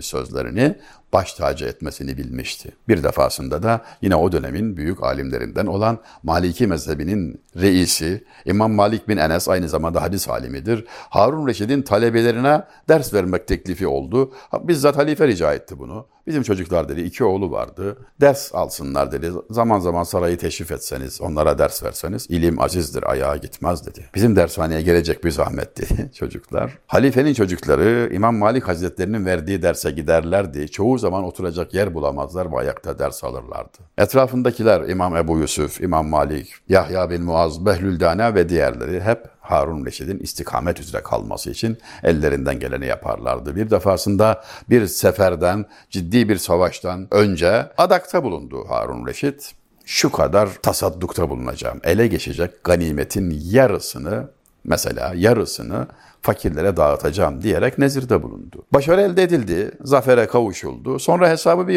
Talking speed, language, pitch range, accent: 135 wpm, Turkish, 85-125 Hz, native